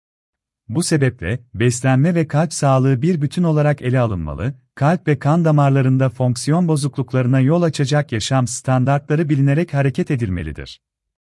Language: Turkish